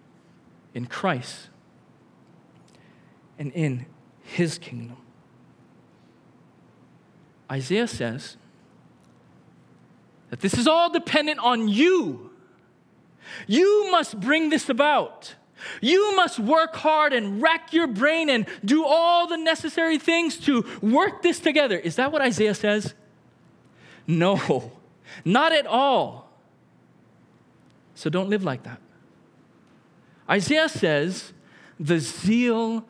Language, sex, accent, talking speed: English, male, American, 100 wpm